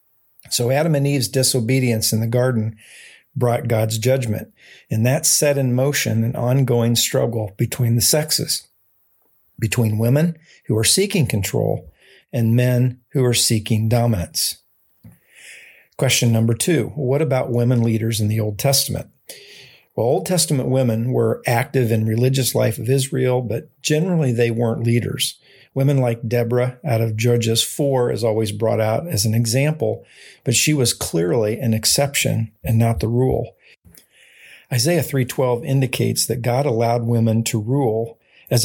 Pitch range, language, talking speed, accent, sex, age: 115-135 Hz, English, 145 wpm, American, male, 50-69